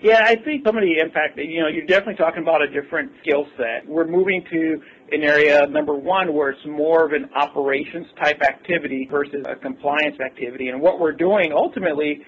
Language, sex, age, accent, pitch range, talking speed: English, male, 50-69, American, 145-165 Hz, 190 wpm